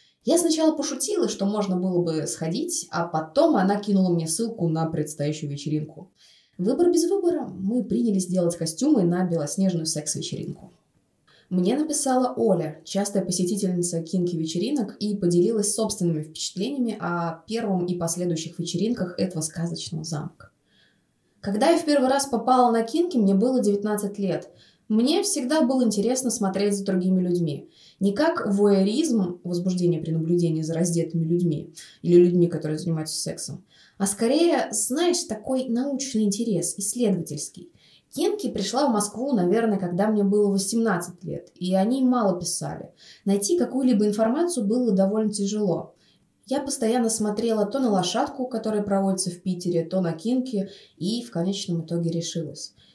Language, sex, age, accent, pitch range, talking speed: Russian, female, 20-39, native, 175-230 Hz, 145 wpm